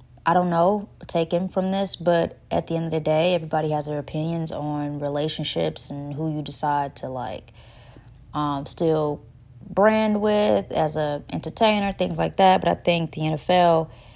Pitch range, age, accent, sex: 145-170 Hz, 20-39, American, female